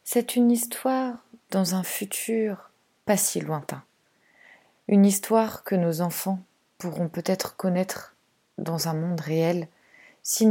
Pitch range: 170-210 Hz